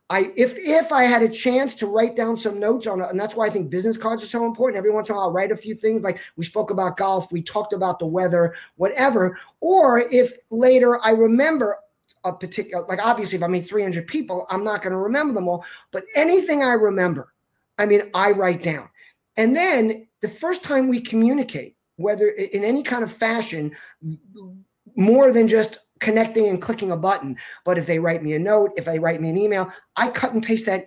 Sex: male